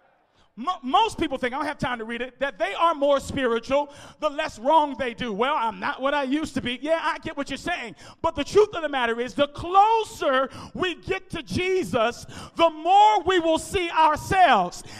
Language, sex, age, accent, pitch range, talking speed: English, male, 40-59, American, 280-370 Hz, 210 wpm